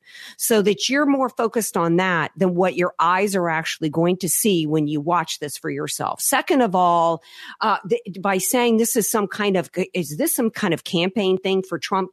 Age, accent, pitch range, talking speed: 50-69, American, 180-240 Hz, 210 wpm